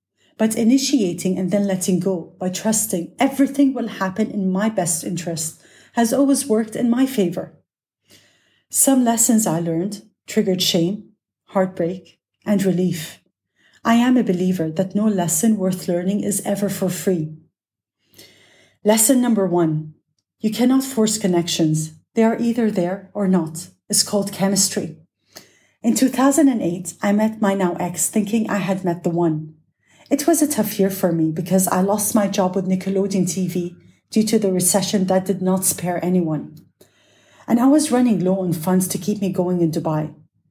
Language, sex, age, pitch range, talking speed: English, female, 40-59, 175-215 Hz, 160 wpm